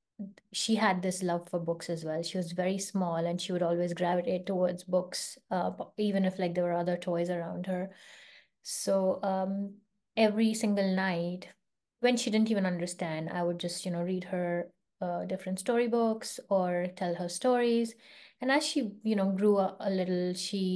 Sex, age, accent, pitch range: female, 20-39, Indian, 185-225 Hz